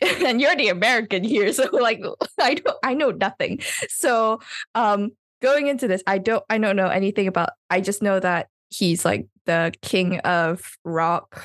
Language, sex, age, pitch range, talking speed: English, female, 10-29, 175-215 Hz, 180 wpm